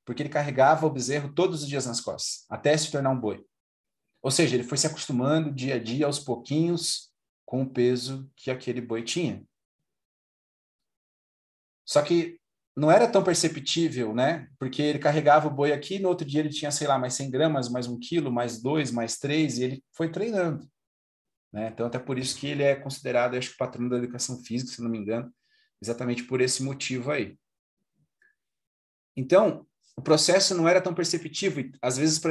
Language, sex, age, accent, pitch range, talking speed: Portuguese, male, 40-59, Brazilian, 125-155 Hz, 195 wpm